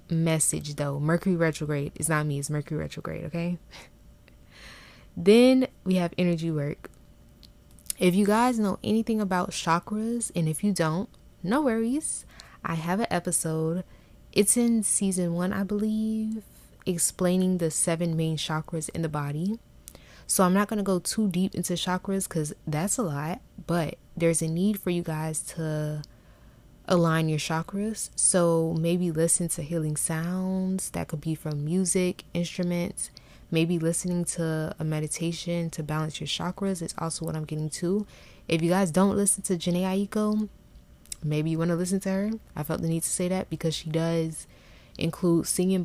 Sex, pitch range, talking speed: female, 155-185 Hz, 165 wpm